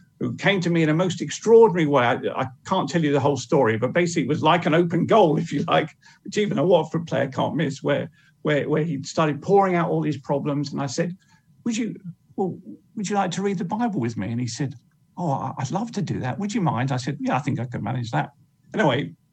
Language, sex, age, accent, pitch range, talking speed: English, male, 50-69, British, 140-180 Hz, 255 wpm